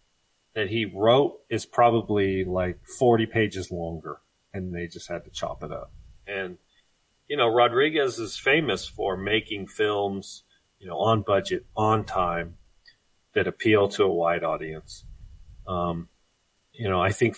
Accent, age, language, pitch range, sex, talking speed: American, 40-59, English, 90-115 Hz, male, 150 wpm